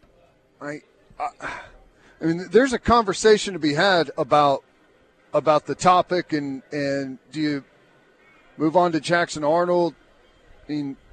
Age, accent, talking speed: 40-59, American, 135 wpm